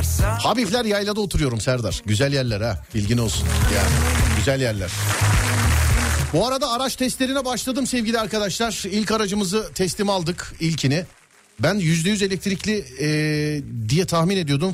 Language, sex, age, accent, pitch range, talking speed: Turkish, male, 40-59, native, 105-180 Hz, 125 wpm